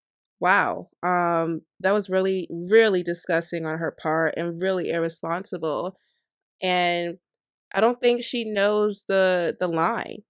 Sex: female